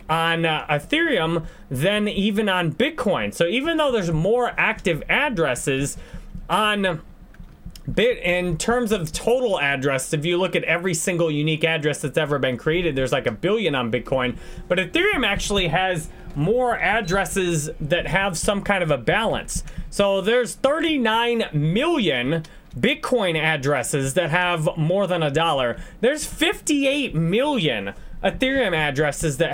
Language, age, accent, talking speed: English, 30-49, American, 140 wpm